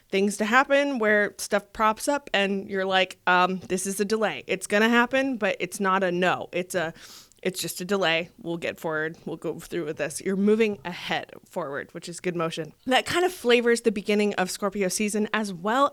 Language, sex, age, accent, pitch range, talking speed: English, female, 20-39, American, 185-230 Hz, 215 wpm